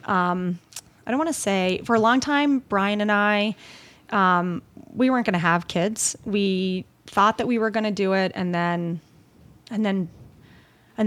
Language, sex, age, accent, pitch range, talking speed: English, female, 30-49, American, 175-205 Hz, 185 wpm